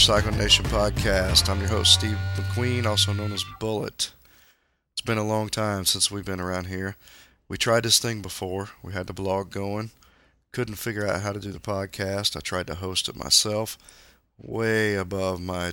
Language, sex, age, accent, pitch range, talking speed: English, male, 40-59, American, 90-105 Hz, 185 wpm